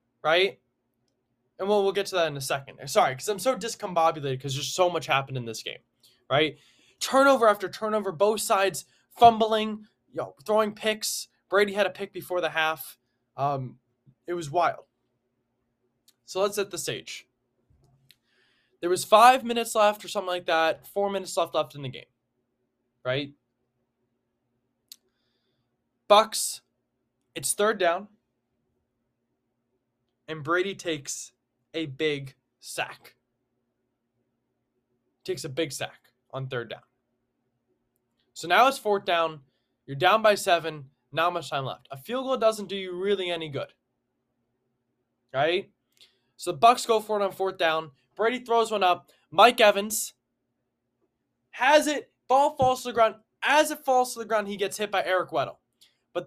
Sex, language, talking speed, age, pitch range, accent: male, English, 150 wpm, 20-39, 125-210 Hz, American